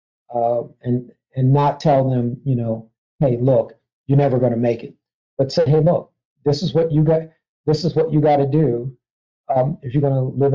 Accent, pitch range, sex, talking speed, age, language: American, 130-170 Hz, male, 215 wpm, 50-69, English